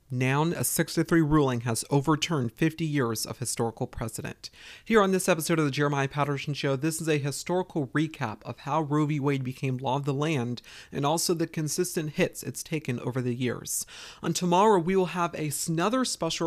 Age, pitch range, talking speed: 40-59, 140-180 Hz, 190 wpm